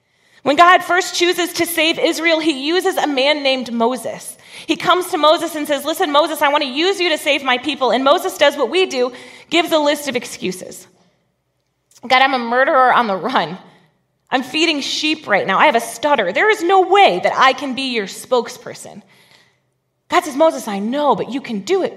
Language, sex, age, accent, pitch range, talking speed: English, female, 30-49, American, 245-325 Hz, 210 wpm